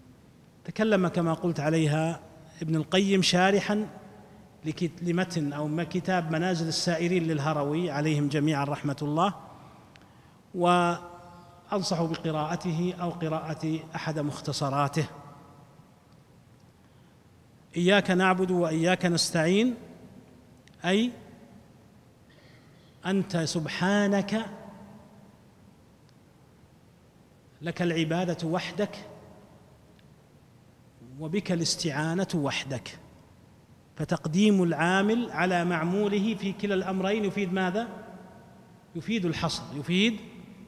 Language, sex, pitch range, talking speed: Arabic, male, 150-185 Hz, 70 wpm